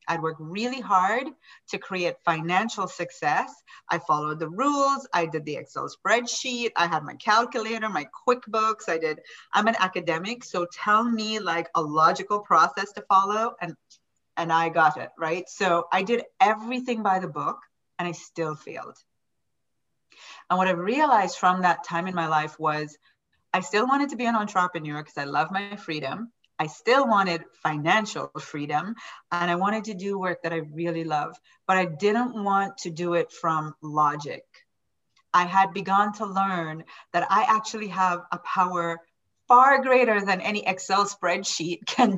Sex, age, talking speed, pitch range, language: female, 30-49, 170 wpm, 165-210 Hz, English